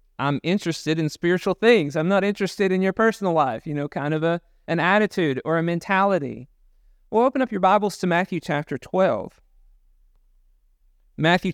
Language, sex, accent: English, male, American